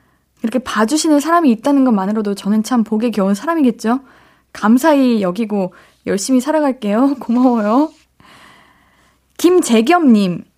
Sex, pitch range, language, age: female, 210-325 Hz, Korean, 20-39